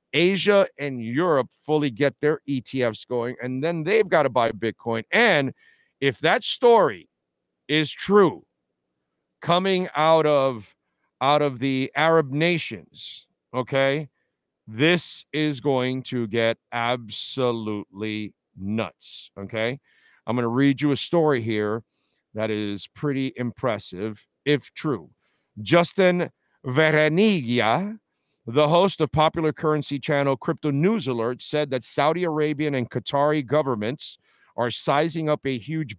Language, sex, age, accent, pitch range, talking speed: English, male, 50-69, American, 120-165 Hz, 125 wpm